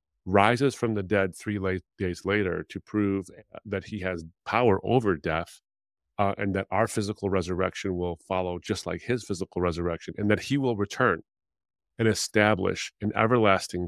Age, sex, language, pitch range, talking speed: 30-49, male, English, 85-105 Hz, 165 wpm